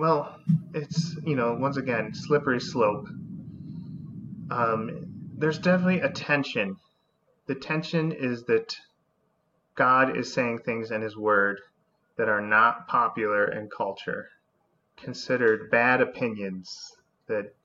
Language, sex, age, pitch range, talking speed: English, male, 30-49, 115-160 Hz, 115 wpm